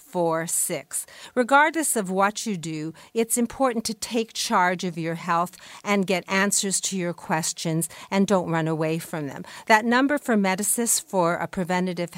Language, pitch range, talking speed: English, 175-225 Hz, 160 wpm